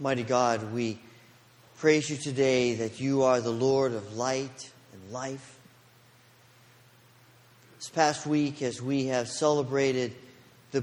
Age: 40-59